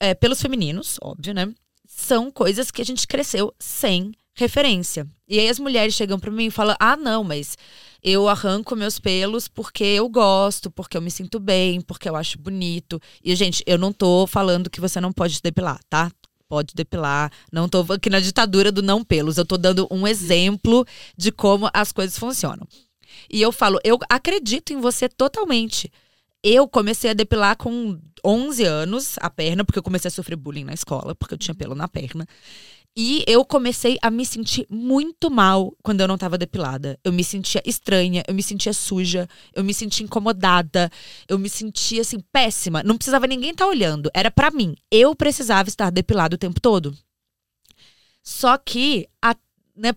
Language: Portuguese